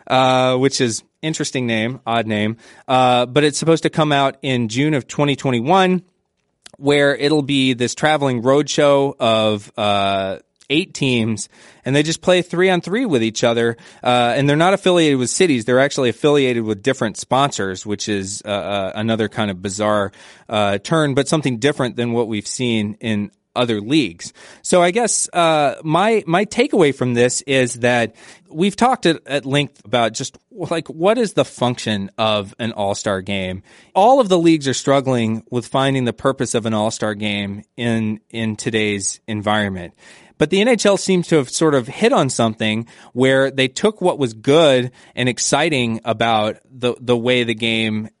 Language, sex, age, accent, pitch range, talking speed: English, male, 30-49, American, 110-150 Hz, 170 wpm